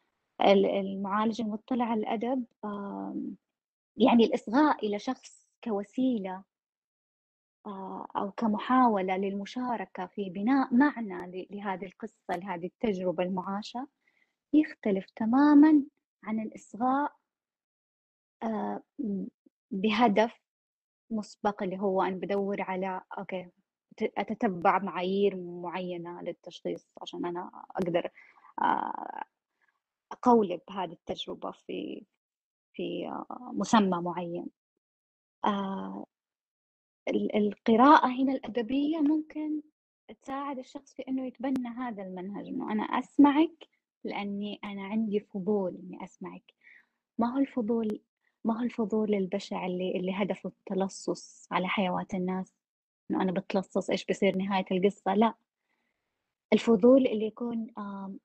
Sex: female